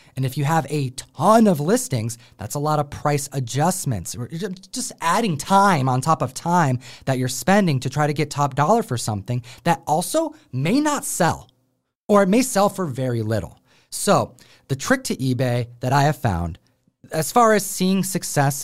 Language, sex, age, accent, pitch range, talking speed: English, male, 30-49, American, 130-180 Hz, 185 wpm